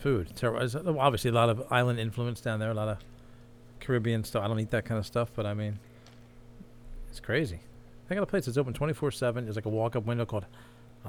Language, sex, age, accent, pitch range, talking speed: English, male, 40-59, American, 115-130 Hz, 215 wpm